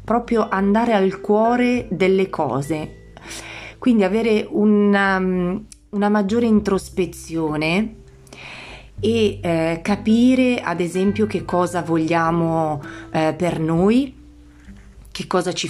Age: 30-49